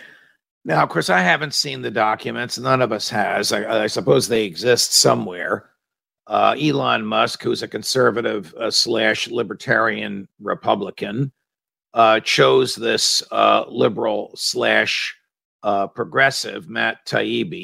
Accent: American